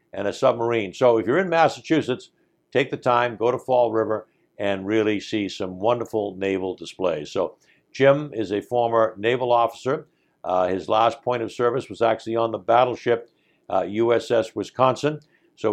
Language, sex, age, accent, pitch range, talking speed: English, male, 60-79, American, 110-130 Hz, 170 wpm